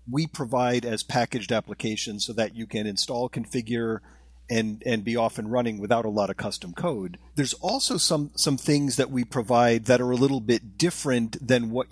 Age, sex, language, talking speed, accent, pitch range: 40-59, male, English, 195 wpm, American, 110-140 Hz